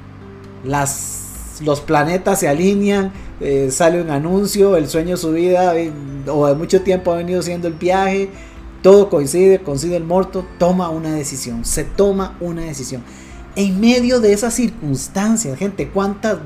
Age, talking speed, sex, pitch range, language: 30-49, 155 wpm, male, 140-190 Hz, Spanish